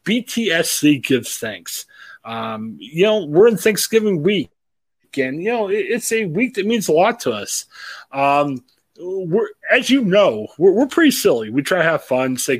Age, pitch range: 30-49, 125-200 Hz